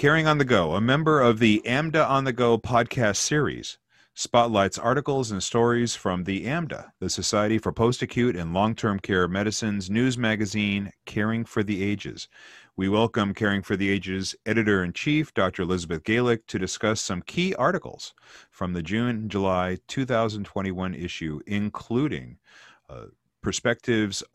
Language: English